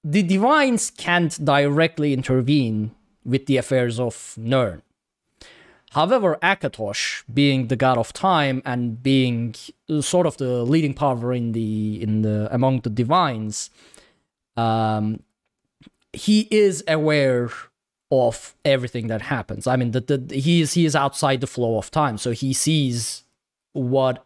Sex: male